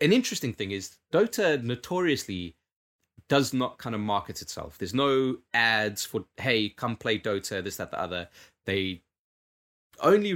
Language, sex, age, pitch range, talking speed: English, male, 20-39, 95-130 Hz, 150 wpm